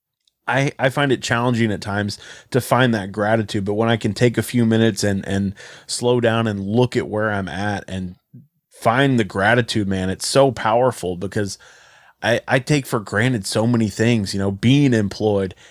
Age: 30-49